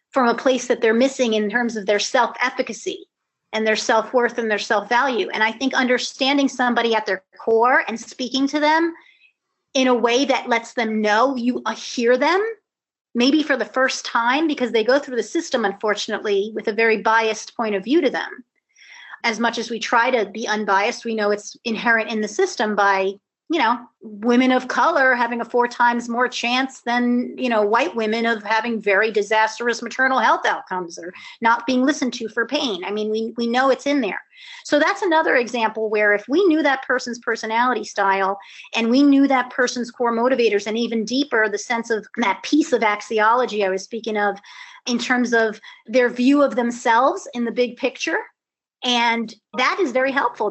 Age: 30-49